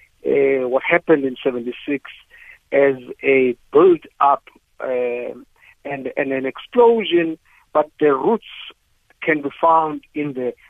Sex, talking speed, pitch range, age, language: male, 120 wpm, 125-210 Hz, 50-69, English